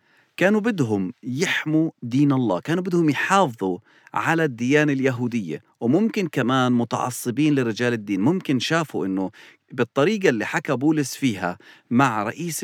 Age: 40-59